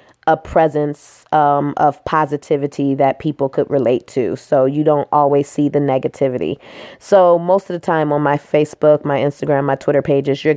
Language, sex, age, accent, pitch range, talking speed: English, female, 20-39, American, 150-180 Hz, 175 wpm